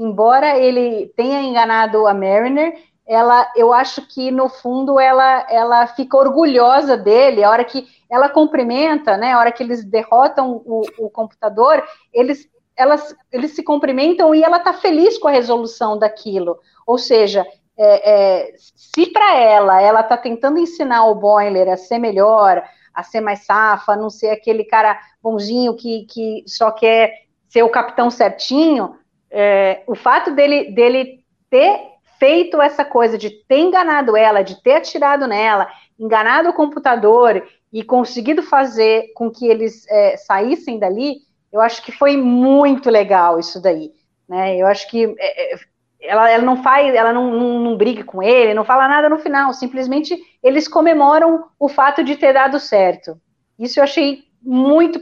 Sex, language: female, Portuguese